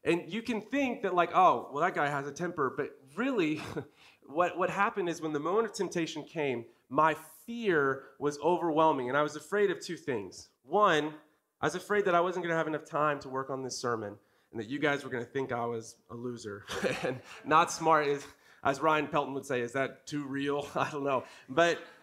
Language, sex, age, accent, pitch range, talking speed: English, male, 30-49, American, 140-195 Hz, 220 wpm